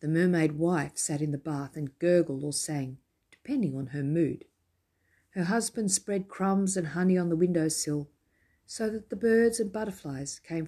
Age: 50-69